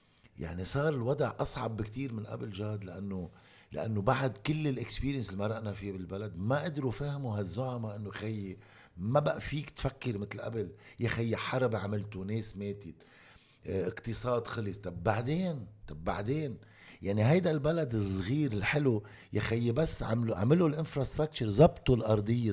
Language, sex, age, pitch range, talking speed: Arabic, male, 50-69, 105-135 Hz, 140 wpm